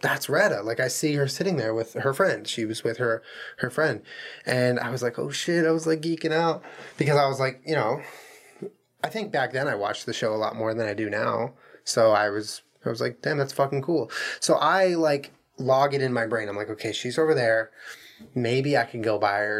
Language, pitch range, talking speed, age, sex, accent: English, 115-160 Hz, 240 wpm, 20-39, male, American